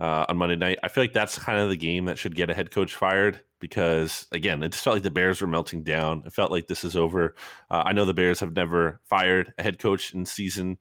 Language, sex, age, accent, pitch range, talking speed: English, male, 30-49, American, 85-105 Hz, 270 wpm